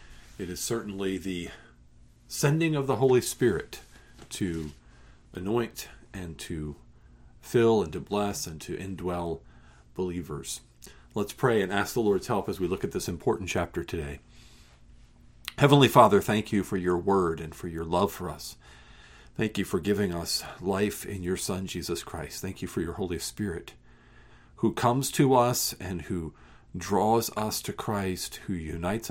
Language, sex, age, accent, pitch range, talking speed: English, male, 50-69, American, 75-105 Hz, 160 wpm